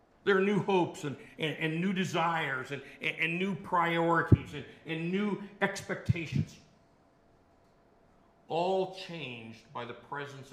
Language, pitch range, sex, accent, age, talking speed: English, 125-160 Hz, male, American, 60-79, 130 wpm